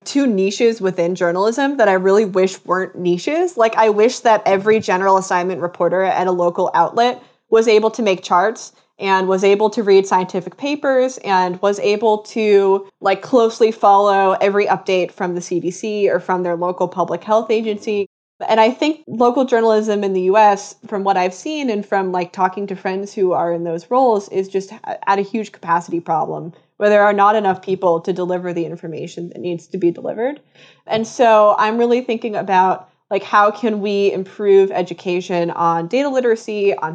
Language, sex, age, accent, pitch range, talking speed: English, female, 20-39, American, 185-220 Hz, 185 wpm